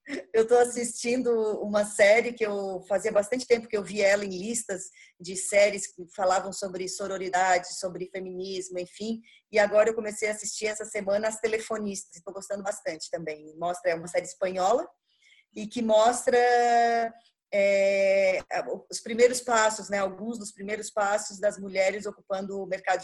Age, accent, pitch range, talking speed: 20-39, Brazilian, 180-225 Hz, 160 wpm